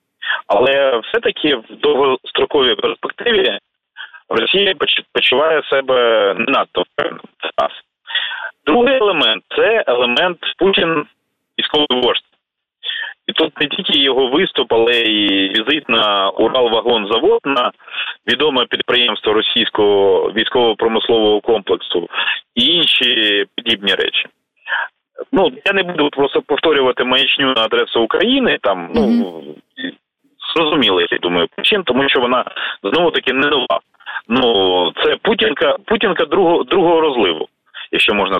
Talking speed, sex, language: 105 wpm, male, Ukrainian